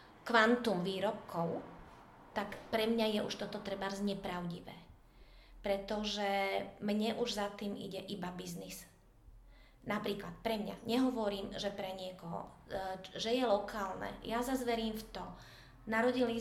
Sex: female